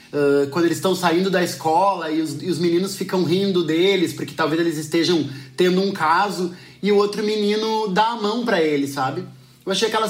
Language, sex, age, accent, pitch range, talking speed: Portuguese, male, 20-39, Brazilian, 175-210 Hz, 195 wpm